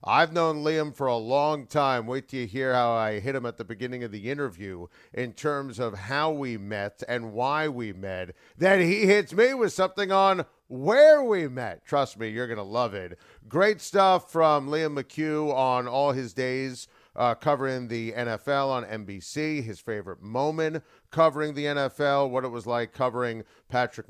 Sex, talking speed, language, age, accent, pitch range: male, 185 wpm, English, 40-59, American, 115-150 Hz